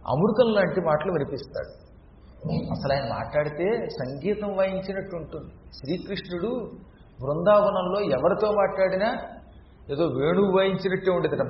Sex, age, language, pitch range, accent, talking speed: male, 40-59, Telugu, 175-215 Hz, native, 95 wpm